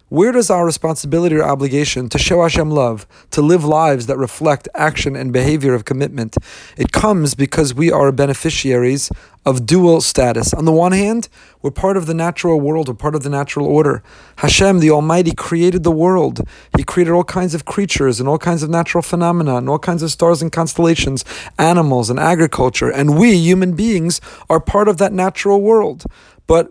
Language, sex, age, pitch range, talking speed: English, male, 30-49, 140-180 Hz, 190 wpm